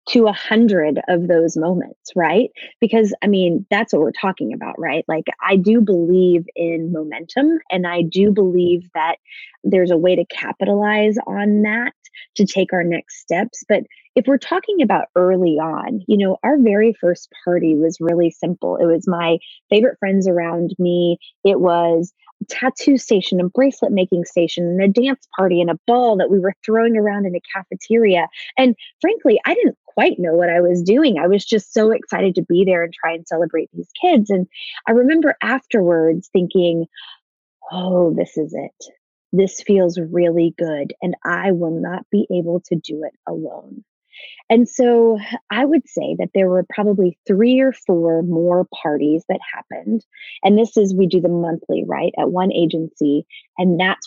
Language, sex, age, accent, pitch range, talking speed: English, female, 20-39, American, 170-220 Hz, 180 wpm